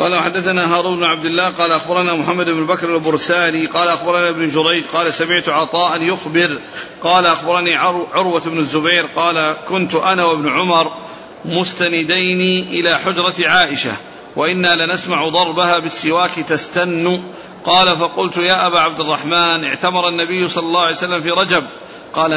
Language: Arabic